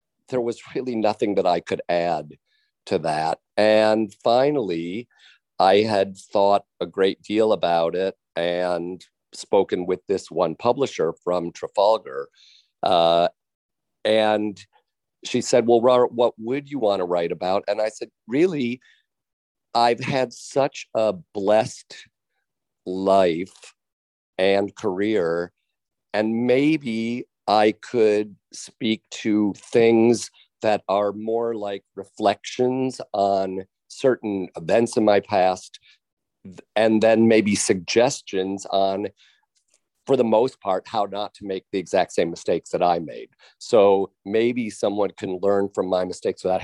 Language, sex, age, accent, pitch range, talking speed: English, male, 50-69, American, 95-115 Hz, 125 wpm